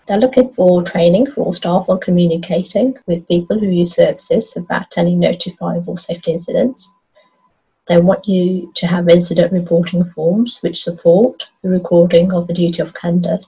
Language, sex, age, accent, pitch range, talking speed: English, female, 30-49, British, 175-195 Hz, 160 wpm